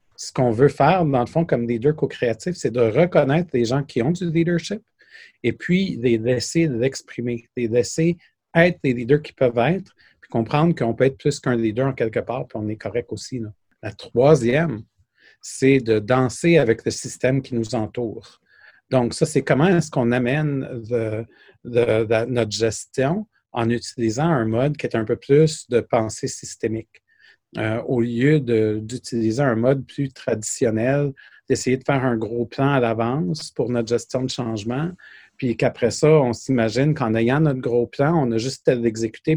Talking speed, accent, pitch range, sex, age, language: 185 wpm, Canadian, 115-145 Hz, male, 40-59, French